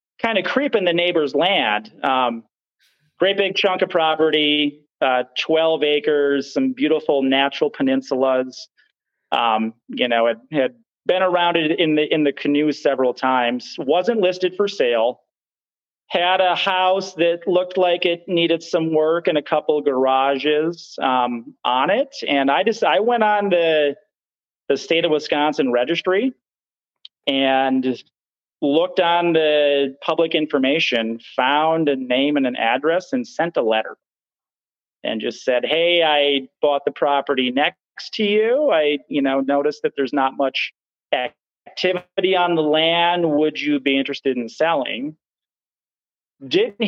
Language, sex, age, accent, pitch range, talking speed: English, male, 30-49, American, 135-180 Hz, 150 wpm